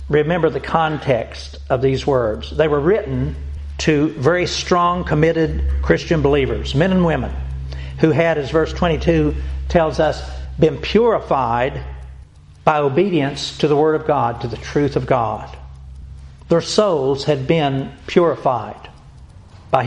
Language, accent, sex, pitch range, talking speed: English, American, male, 115-160 Hz, 135 wpm